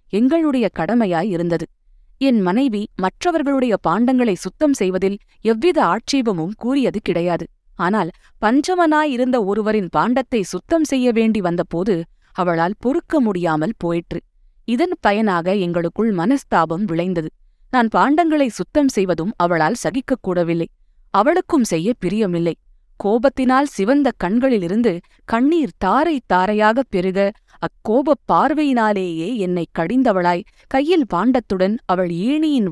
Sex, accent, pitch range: female, native, 180-265 Hz